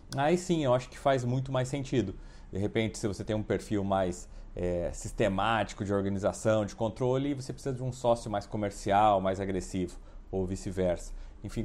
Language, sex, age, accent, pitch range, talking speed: Portuguese, male, 40-59, Brazilian, 95-125 Hz, 175 wpm